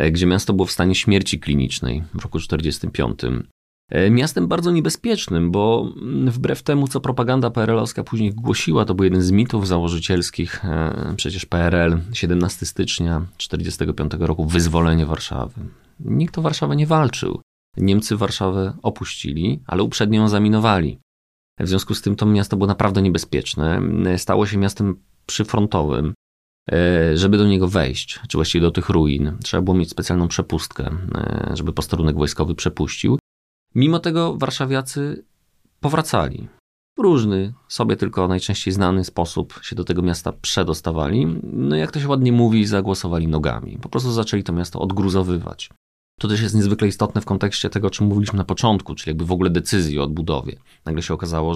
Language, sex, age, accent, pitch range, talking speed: Polish, male, 30-49, native, 85-105 Hz, 150 wpm